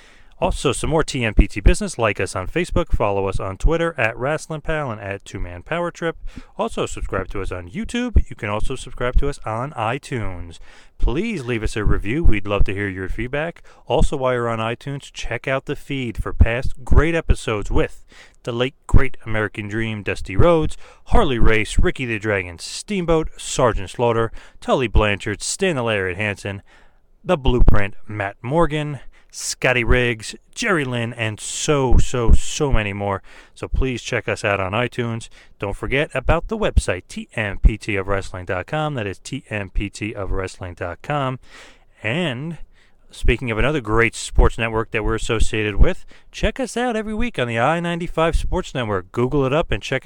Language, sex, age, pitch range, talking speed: English, male, 30-49, 105-145 Hz, 165 wpm